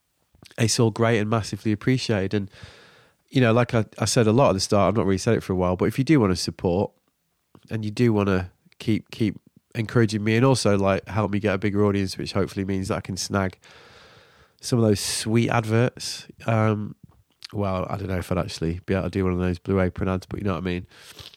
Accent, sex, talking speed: British, male, 245 wpm